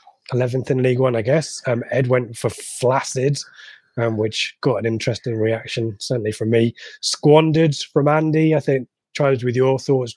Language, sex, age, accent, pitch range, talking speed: English, male, 20-39, British, 115-140 Hz, 170 wpm